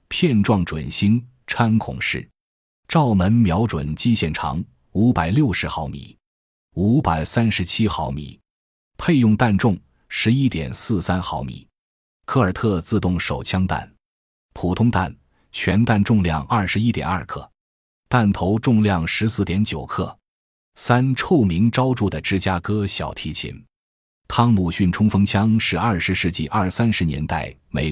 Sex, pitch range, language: male, 85-110 Hz, Chinese